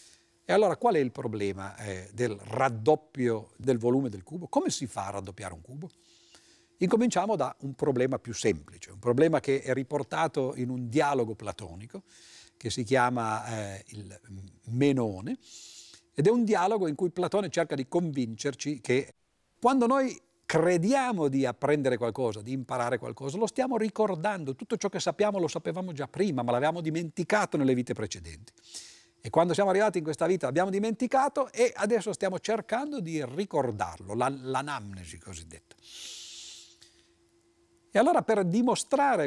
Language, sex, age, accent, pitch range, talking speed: Italian, male, 50-69, native, 115-185 Hz, 150 wpm